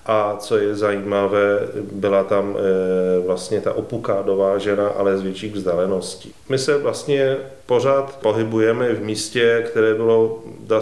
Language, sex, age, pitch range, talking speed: Czech, male, 30-49, 100-110 Hz, 140 wpm